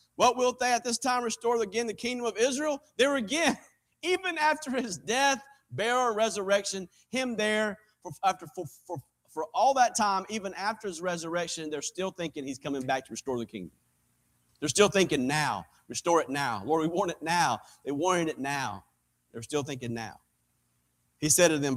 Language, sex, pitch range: English, male, 145-225 Hz